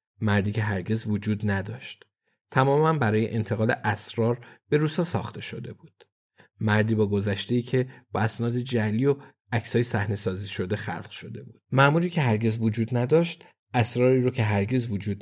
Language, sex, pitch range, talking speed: Persian, male, 105-130 Hz, 150 wpm